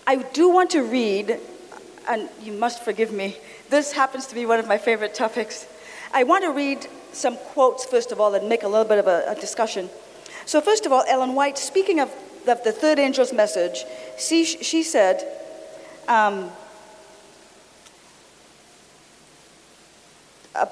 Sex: female